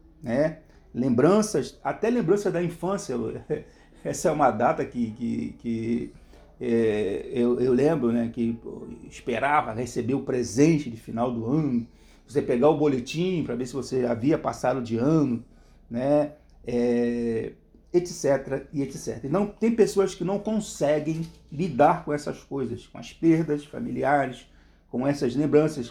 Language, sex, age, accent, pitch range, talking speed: Portuguese, male, 50-69, Brazilian, 120-165 Hz, 145 wpm